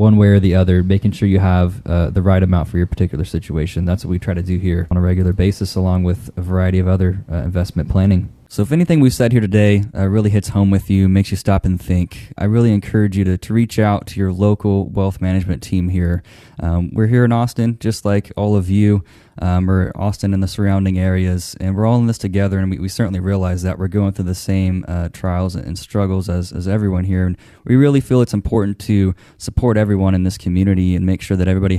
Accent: American